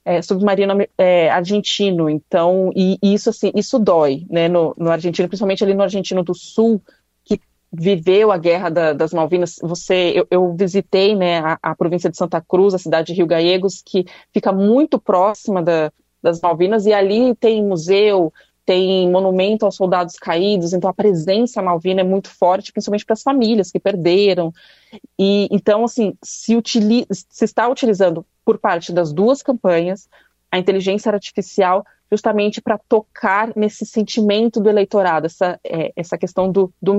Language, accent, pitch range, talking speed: Portuguese, Brazilian, 180-210 Hz, 160 wpm